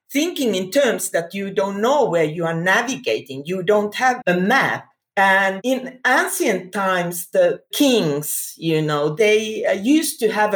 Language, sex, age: English, female, 50-69